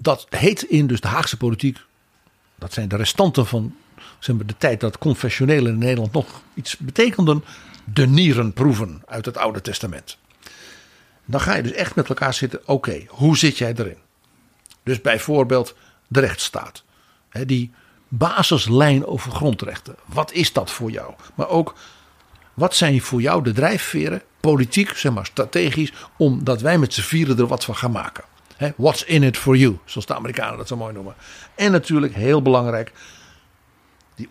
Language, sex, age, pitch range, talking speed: Dutch, male, 60-79, 115-155 Hz, 160 wpm